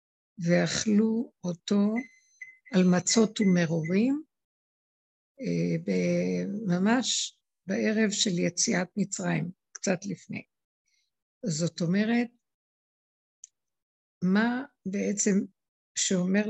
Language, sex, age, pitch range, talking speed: Hebrew, female, 60-79, 170-210 Hz, 60 wpm